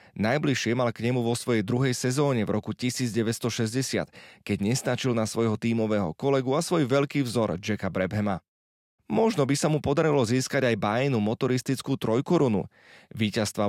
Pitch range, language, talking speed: 110-140 Hz, Slovak, 150 wpm